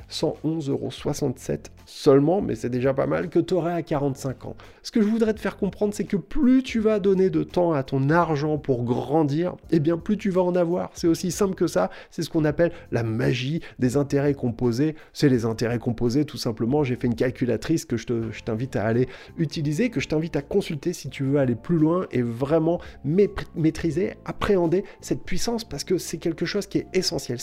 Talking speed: 215 wpm